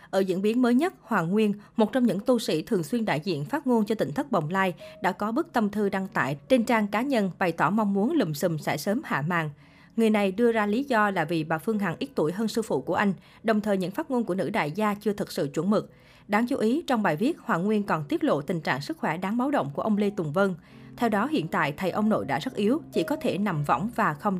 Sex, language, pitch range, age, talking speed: female, Vietnamese, 180-235 Hz, 20-39, 285 wpm